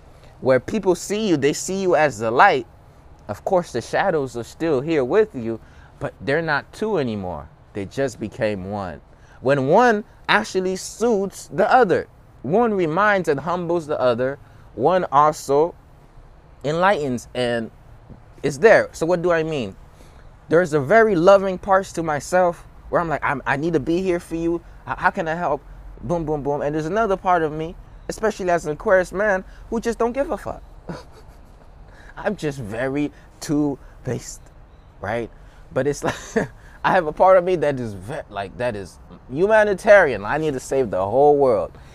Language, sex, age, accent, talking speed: English, male, 20-39, American, 170 wpm